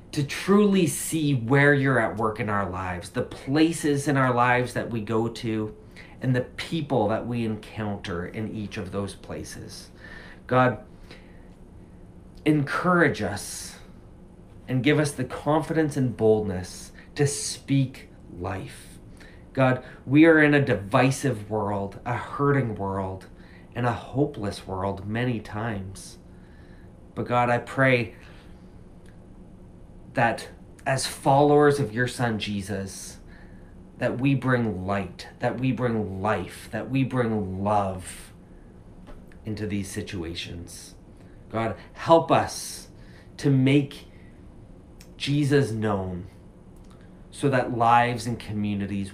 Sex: male